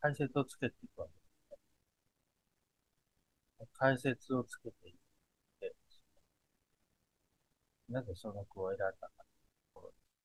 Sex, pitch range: male, 100-140 Hz